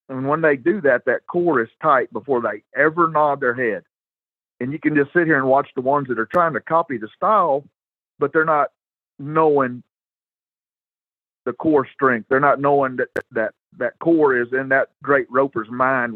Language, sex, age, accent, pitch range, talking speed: English, male, 50-69, American, 125-155 Hz, 195 wpm